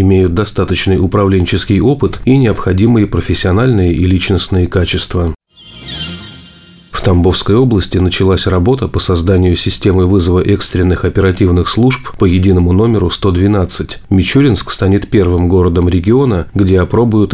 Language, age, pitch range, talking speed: Russian, 30-49, 90-100 Hz, 115 wpm